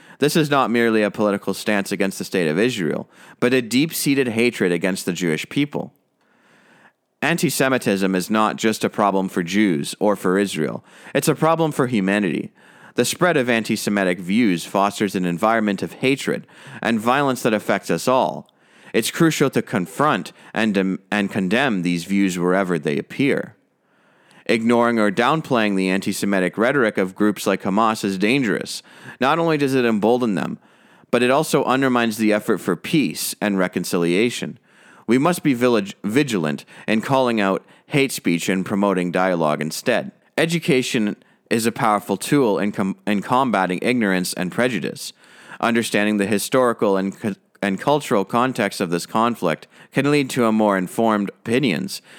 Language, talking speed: English, 160 wpm